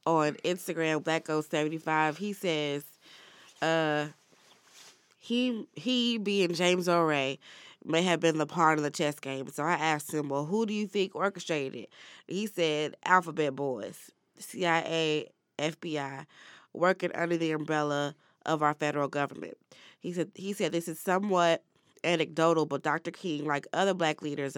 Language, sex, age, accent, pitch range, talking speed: English, female, 20-39, American, 150-175 Hz, 150 wpm